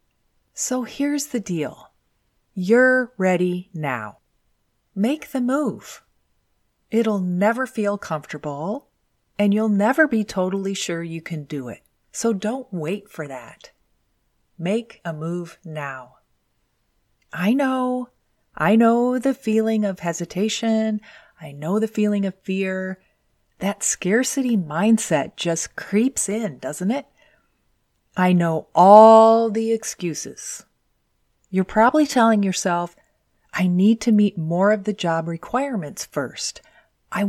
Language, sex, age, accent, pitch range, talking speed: English, female, 30-49, American, 170-230 Hz, 120 wpm